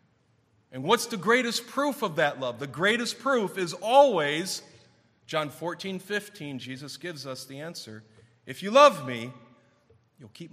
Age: 40-59